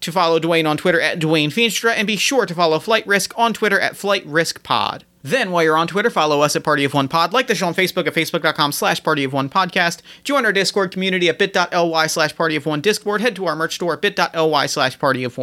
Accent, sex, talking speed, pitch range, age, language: American, male, 210 wpm, 155-200 Hz, 30-49, English